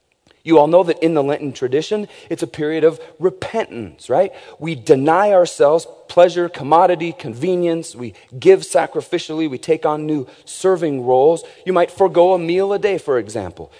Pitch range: 140-185 Hz